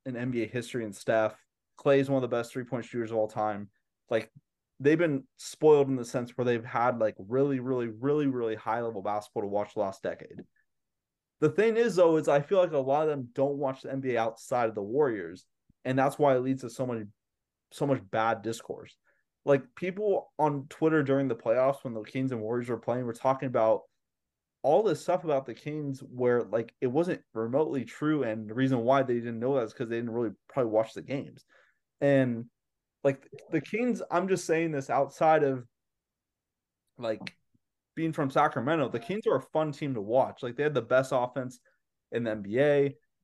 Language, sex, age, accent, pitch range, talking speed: English, male, 20-39, American, 115-140 Hz, 205 wpm